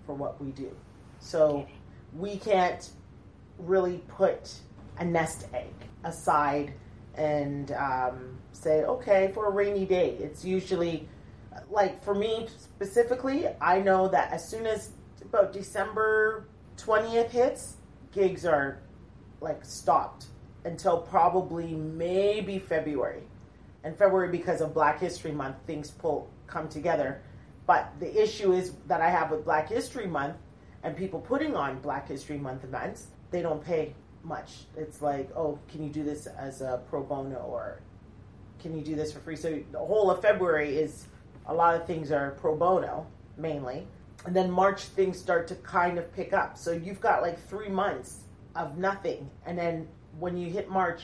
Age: 30-49